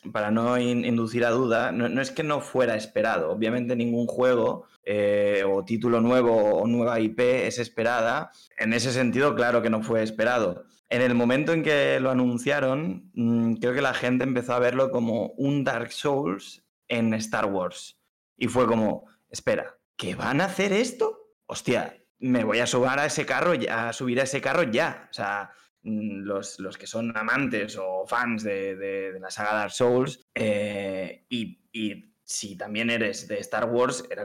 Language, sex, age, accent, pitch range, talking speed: Spanish, male, 20-39, Spanish, 110-130 Hz, 170 wpm